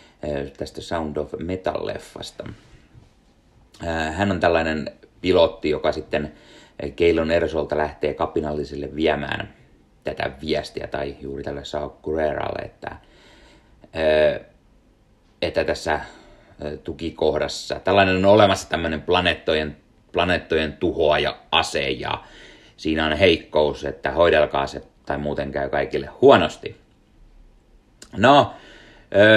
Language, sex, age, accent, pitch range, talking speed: Finnish, male, 30-49, native, 75-95 Hz, 95 wpm